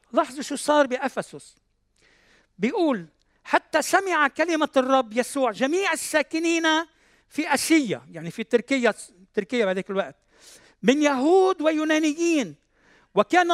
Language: Arabic